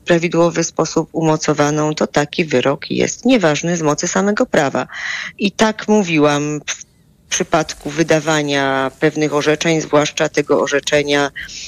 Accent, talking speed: native, 125 wpm